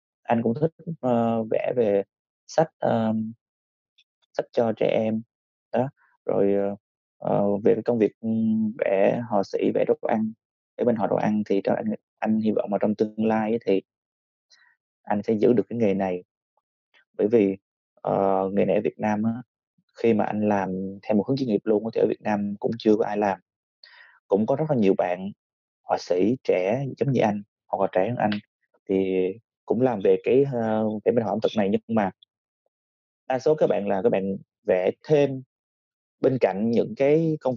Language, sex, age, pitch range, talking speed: Vietnamese, male, 20-39, 95-120 Hz, 195 wpm